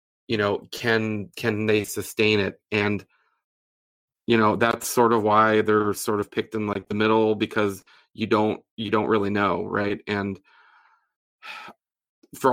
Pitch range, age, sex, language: 105-120 Hz, 30-49, male, English